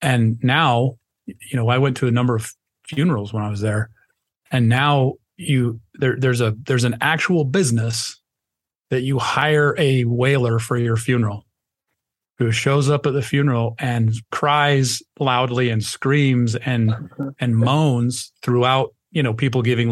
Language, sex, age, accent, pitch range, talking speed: English, male, 30-49, American, 115-140 Hz, 155 wpm